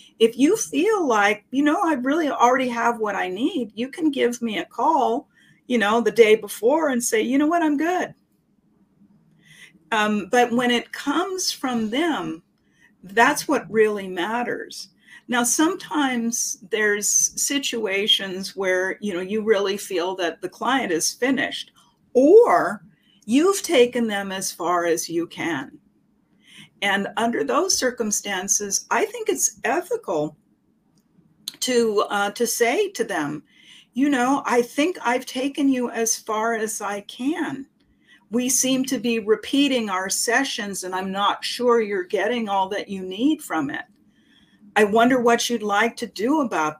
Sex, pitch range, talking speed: female, 200-260 Hz, 155 wpm